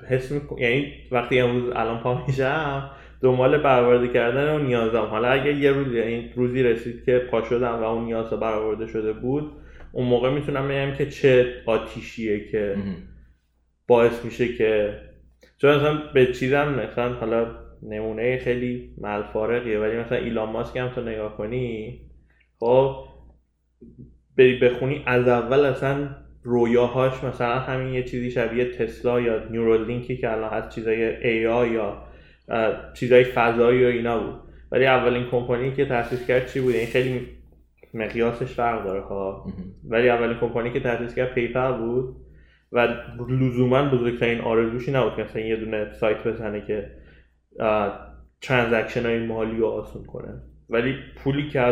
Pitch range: 110-130 Hz